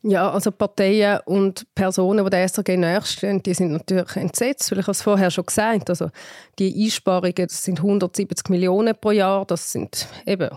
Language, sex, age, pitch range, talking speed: German, female, 30-49, 185-215 Hz, 185 wpm